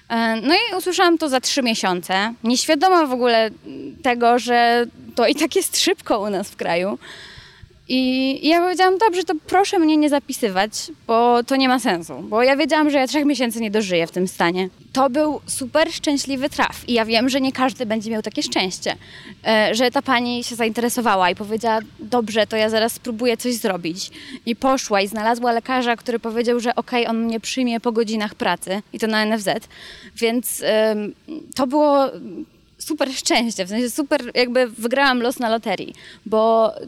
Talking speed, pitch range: 175 wpm, 225-285 Hz